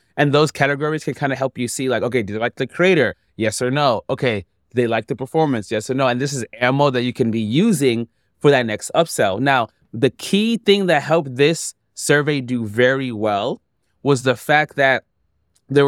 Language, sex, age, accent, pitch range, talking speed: English, male, 20-39, American, 120-155 Hz, 210 wpm